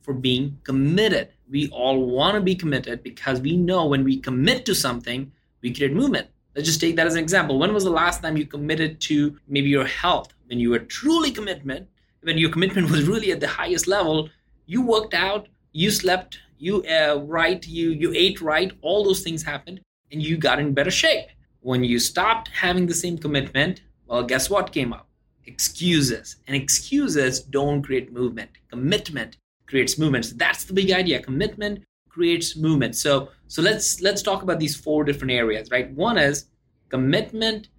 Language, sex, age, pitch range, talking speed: English, male, 30-49, 140-185 Hz, 185 wpm